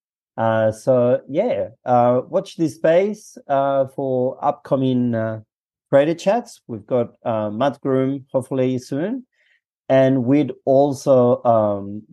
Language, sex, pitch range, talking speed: English, male, 115-145 Hz, 120 wpm